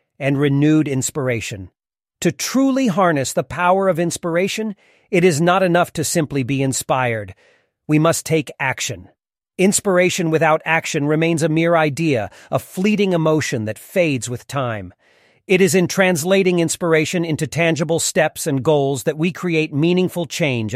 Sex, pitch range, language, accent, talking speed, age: male, 135-180 Hz, Hindi, American, 145 wpm, 40-59